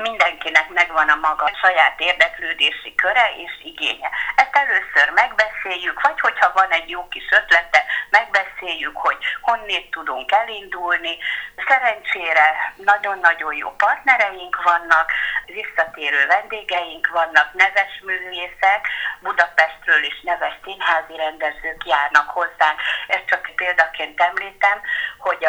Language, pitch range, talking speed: Hungarian, 170-240 Hz, 110 wpm